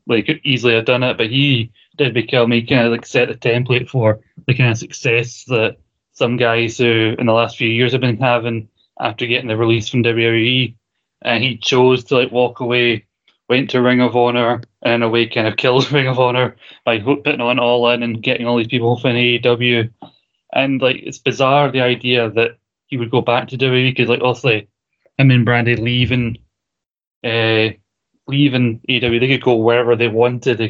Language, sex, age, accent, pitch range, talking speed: English, male, 20-39, British, 115-125 Hz, 205 wpm